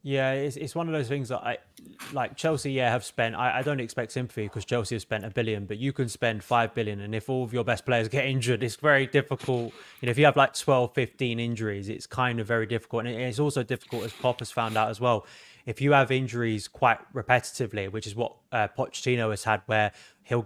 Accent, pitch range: British, 110-130 Hz